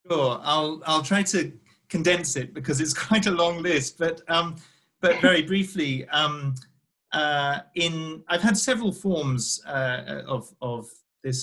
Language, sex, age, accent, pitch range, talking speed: English, male, 40-59, British, 125-150 Hz, 150 wpm